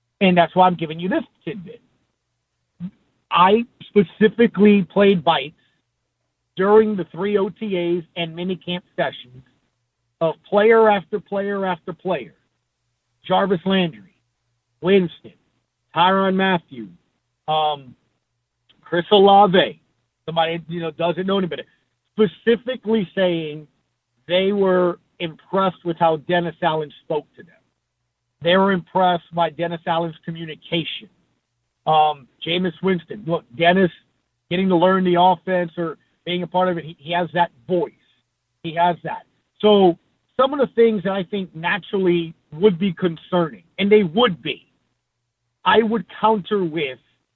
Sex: male